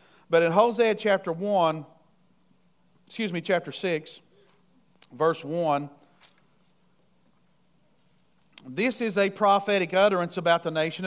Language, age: English, 50-69